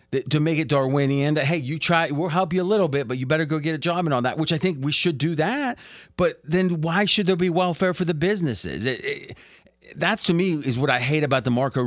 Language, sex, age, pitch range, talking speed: English, male, 30-49, 125-160 Hz, 260 wpm